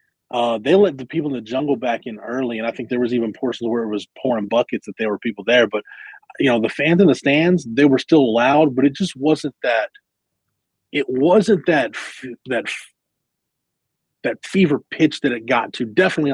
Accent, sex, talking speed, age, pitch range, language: American, male, 210 wpm, 30-49, 110-140 Hz, English